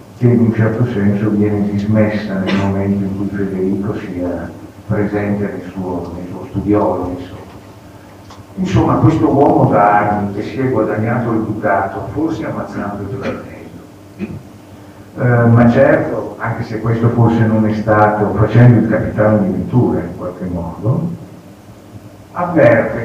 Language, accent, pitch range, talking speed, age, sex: Italian, native, 100-115 Hz, 135 wpm, 60-79, male